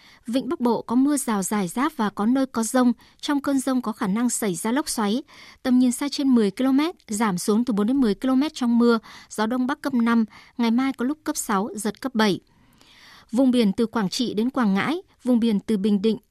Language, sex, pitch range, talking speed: Vietnamese, male, 215-265 Hz, 240 wpm